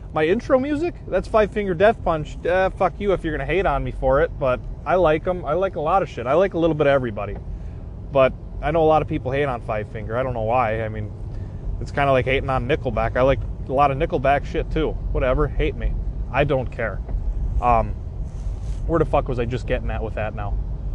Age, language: 20-39, English